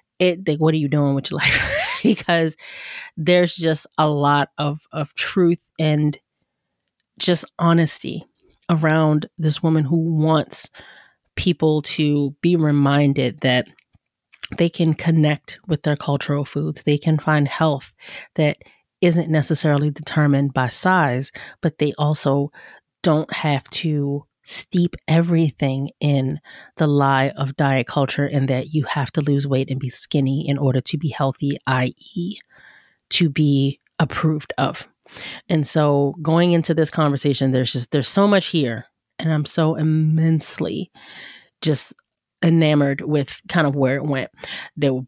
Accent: American